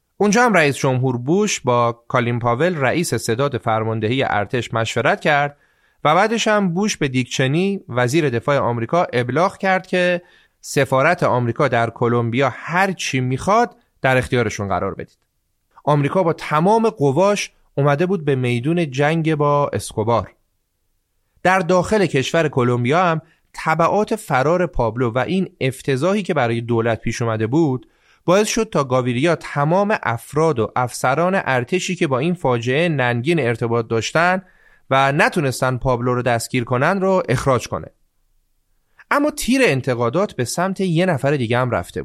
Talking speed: 140 wpm